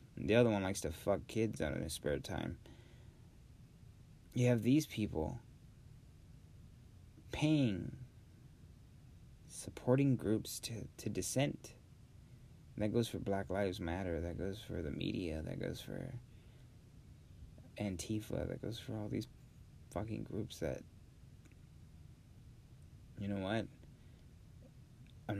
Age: 30-49